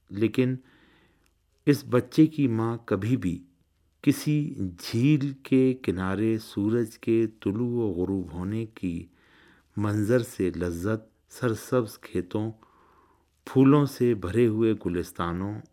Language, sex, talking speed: Urdu, male, 105 wpm